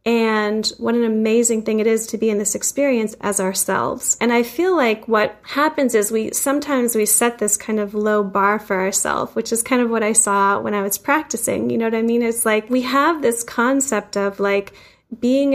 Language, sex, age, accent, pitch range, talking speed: English, female, 10-29, American, 210-245 Hz, 220 wpm